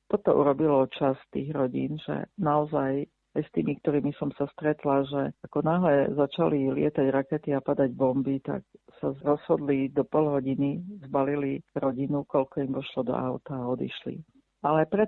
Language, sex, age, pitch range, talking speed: Slovak, female, 50-69, 140-155 Hz, 160 wpm